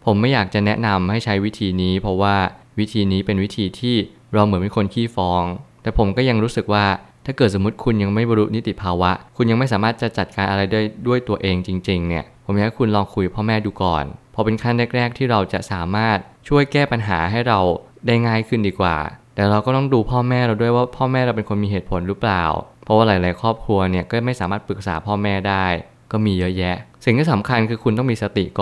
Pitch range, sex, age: 95-120 Hz, male, 20-39